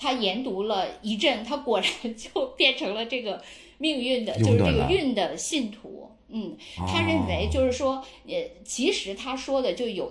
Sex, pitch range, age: female, 205-280 Hz, 10-29